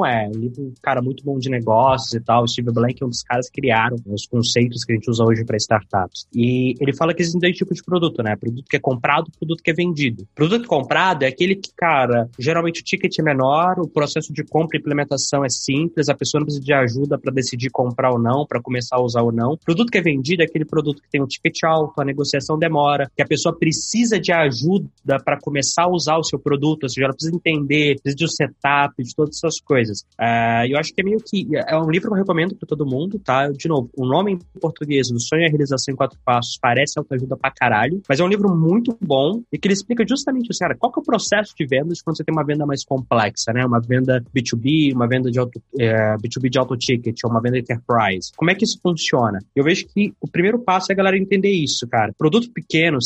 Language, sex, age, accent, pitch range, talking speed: Portuguese, male, 20-39, Brazilian, 130-170 Hz, 255 wpm